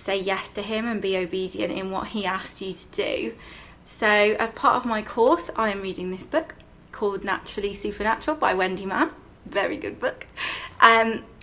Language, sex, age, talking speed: English, female, 30-49, 185 wpm